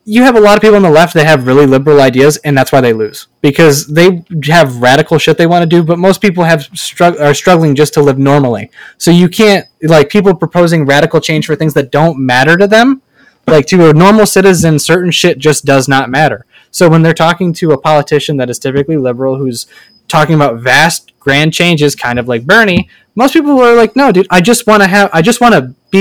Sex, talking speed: male, 235 wpm